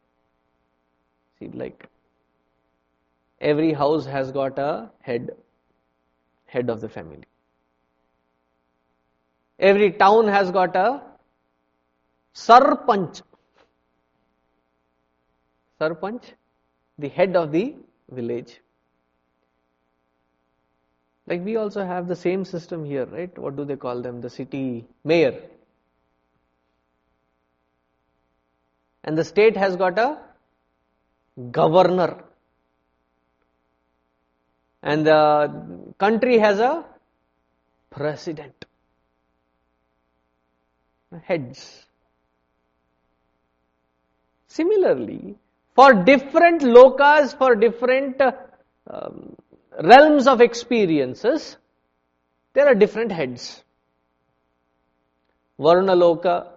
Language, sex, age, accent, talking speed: English, male, 20-39, Indian, 75 wpm